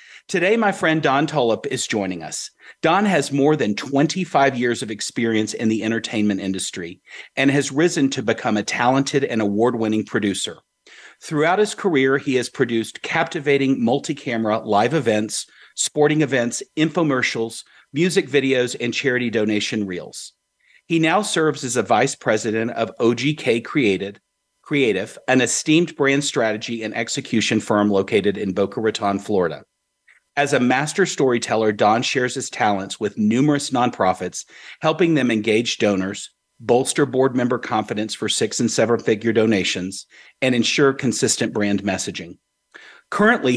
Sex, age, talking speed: male, 40-59, 140 wpm